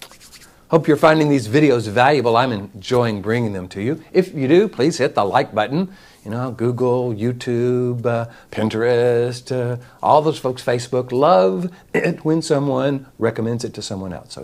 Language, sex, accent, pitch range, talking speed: English, male, American, 120-160 Hz, 170 wpm